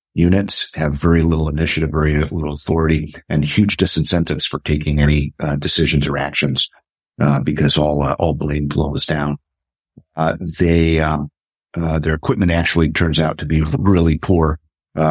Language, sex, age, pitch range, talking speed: English, male, 50-69, 75-85 Hz, 160 wpm